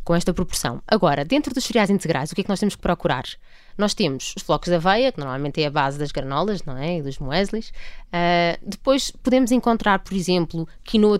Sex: female